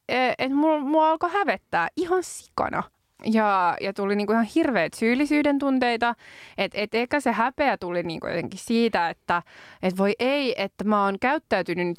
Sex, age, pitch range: female, 20-39, 180-235 Hz